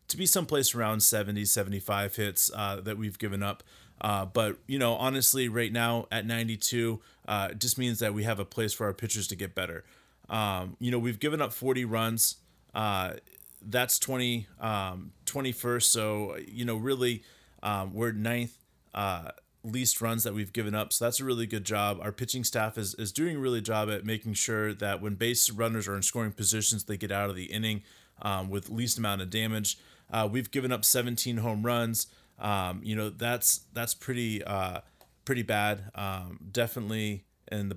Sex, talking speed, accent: male, 190 wpm, American